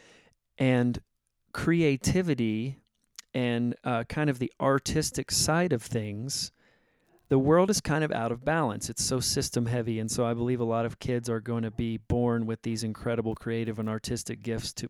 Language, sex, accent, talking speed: English, male, American, 175 wpm